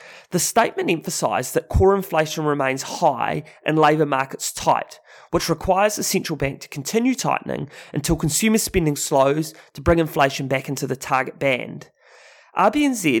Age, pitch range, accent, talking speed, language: 30-49, 140-175 Hz, Australian, 150 wpm, English